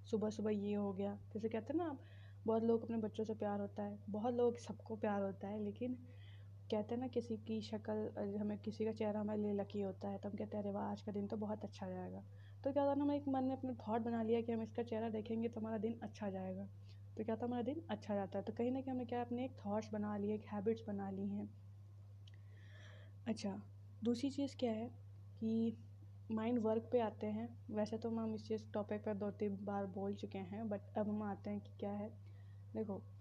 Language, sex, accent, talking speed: Hindi, female, native, 240 wpm